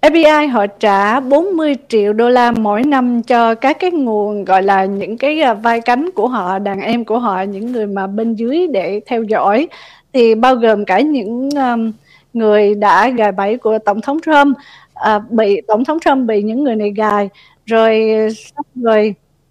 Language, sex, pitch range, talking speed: Vietnamese, female, 220-280 Hz, 170 wpm